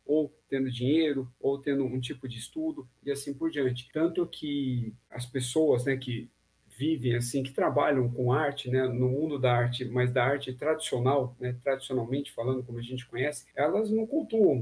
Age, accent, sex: 50-69, Brazilian, male